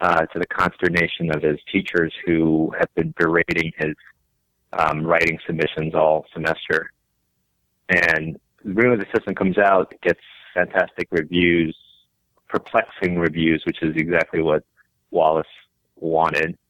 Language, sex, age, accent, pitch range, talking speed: English, male, 30-49, American, 75-90 Hz, 135 wpm